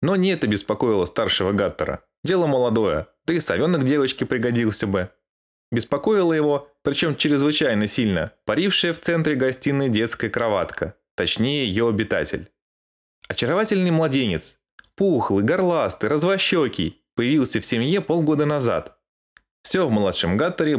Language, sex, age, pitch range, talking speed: Russian, male, 20-39, 105-155 Hz, 125 wpm